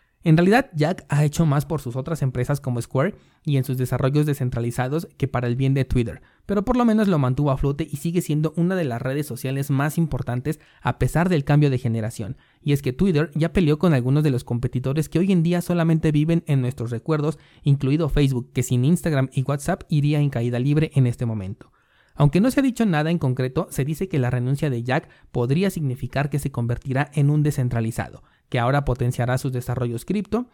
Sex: male